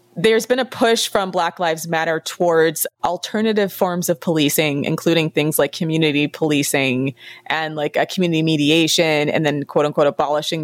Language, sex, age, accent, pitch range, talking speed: English, female, 30-49, American, 155-185 Hz, 160 wpm